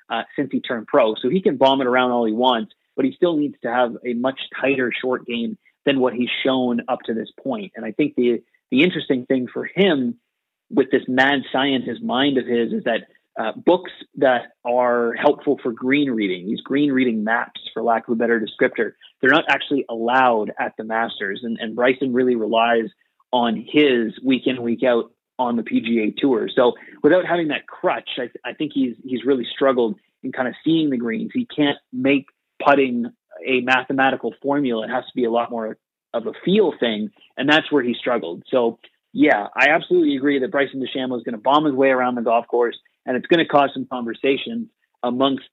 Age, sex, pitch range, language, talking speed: 30-49, male, 120-145 Hz, English, 210 wpm